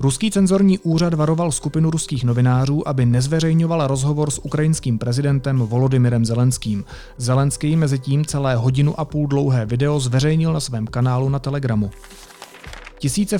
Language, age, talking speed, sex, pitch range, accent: Czech, 40-59, 140 wpm, male, 120-150 Hz, native